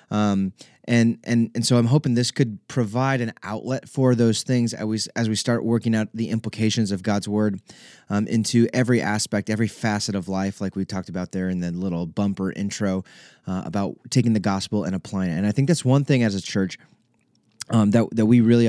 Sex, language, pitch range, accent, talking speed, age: male, English, 100-120 Hz, American, 215 wpm, 20-39